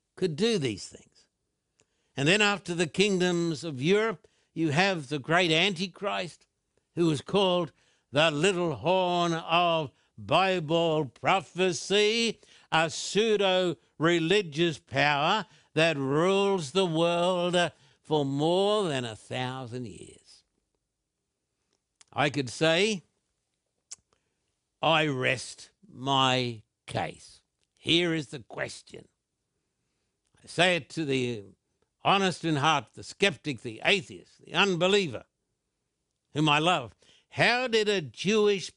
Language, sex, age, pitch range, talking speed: English, male, 60-79, 130-185 Hz, 105 wpm